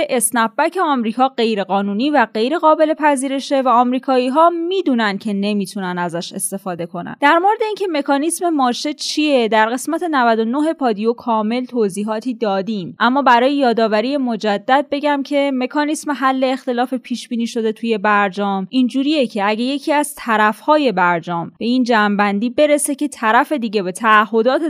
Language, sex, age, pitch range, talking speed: Persian, female, 20-39, 215-280 Hz, 150 wpm